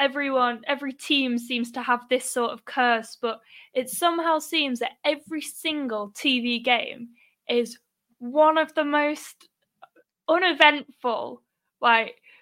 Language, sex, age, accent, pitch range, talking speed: English, female, 10-29, British, 235-290 Hz, 125 wpm